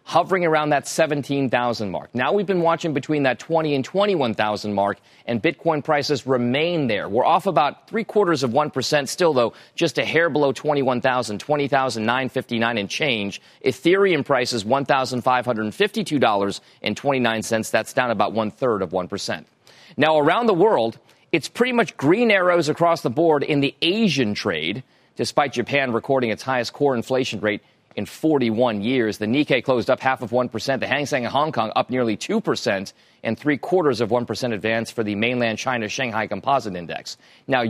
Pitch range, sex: 110-150 Hz, male